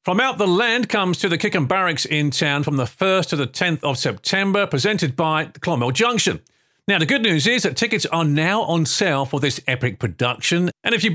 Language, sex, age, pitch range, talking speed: English, male, 40-59, 145-200 Hz, 225 wpm